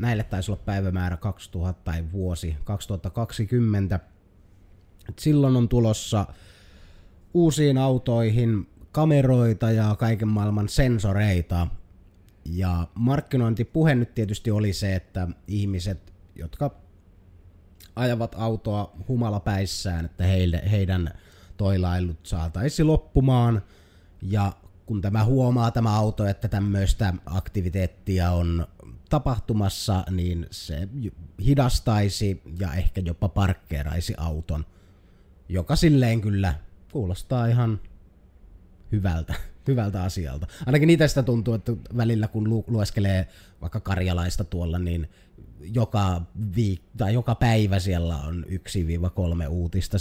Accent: native